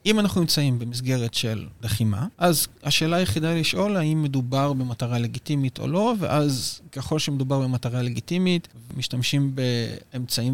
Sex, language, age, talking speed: male, Hebrew, 30-49, 130 wpm